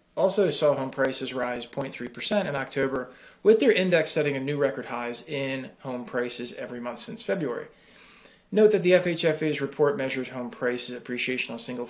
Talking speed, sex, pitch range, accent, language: 170 wpm, male, 125-150 Hz, American, English